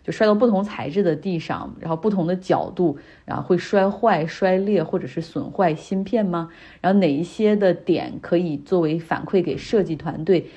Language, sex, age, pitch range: Chinese, female, 30-49, 165-195 Hz